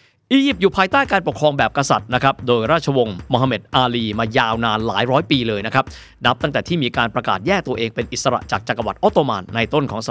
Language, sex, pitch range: Thai, male, 115-160 Hz